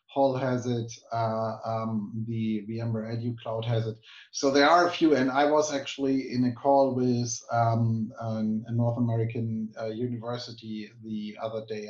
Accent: German